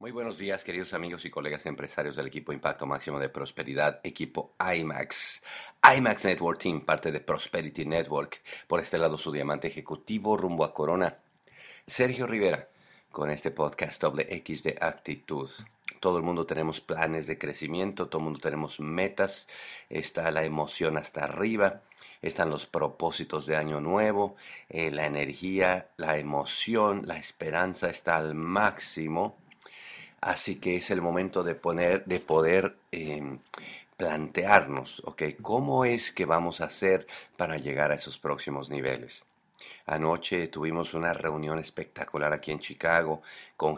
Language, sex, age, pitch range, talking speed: English, male, 50-69, 75-95 Hz, 145 wpm